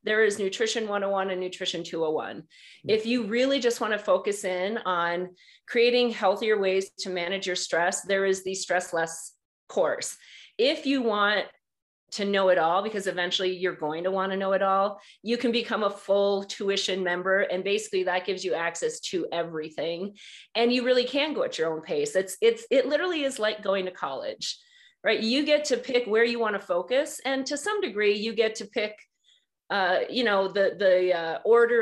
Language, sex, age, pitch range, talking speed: English, female, 40-59, 185-235 Hz, 195 wpm